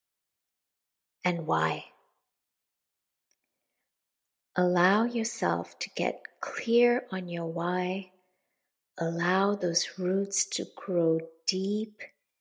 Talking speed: 75 wpm